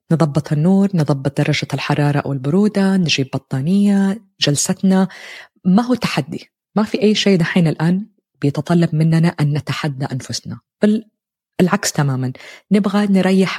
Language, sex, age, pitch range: Arabic, female, 20-39, 145-185 Hz